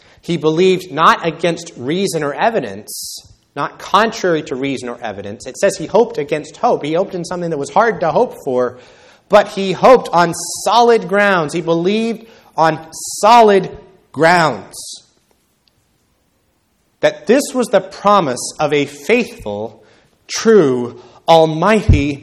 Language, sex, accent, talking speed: English, male, American, 135 wpm